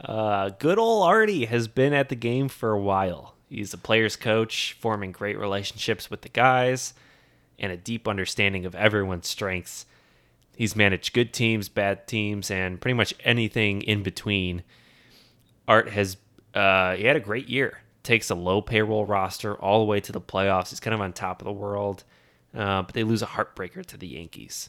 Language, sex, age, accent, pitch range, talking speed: English, male, 20-39, American, 95-120 Hz, 185 wpm